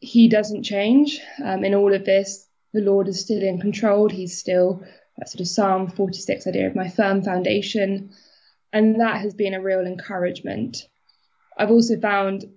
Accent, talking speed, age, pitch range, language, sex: British, 170 wpm, 20-39, 195-230 Hz, English, female